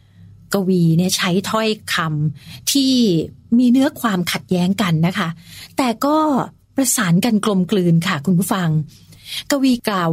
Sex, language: female, Thai